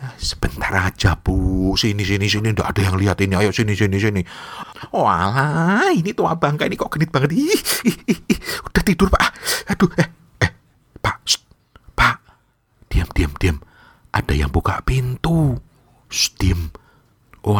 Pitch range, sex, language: 80-105 Hz, male, Indonesian